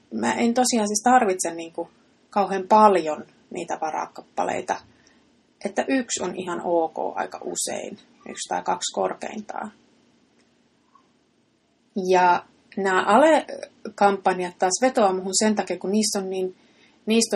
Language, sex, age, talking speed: Finnish, female, 30-49, 120 wpm